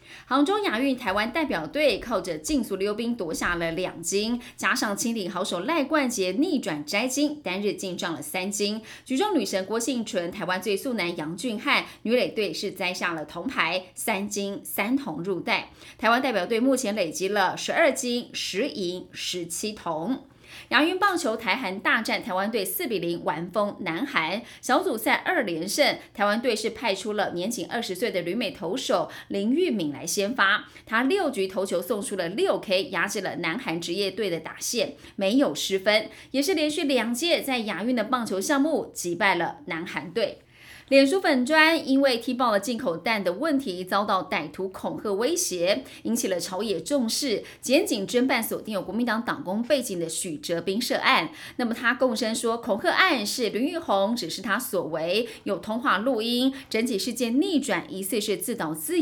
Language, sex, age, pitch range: Chinese, female, 20-39, 190-275 Hz